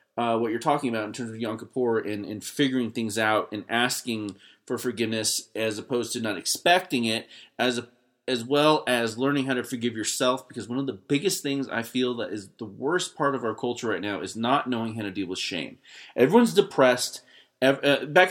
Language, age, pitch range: English, 30-49, 115-140 Hz